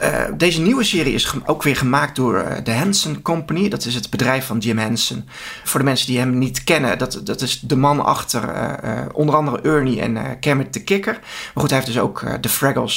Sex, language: male, Dutch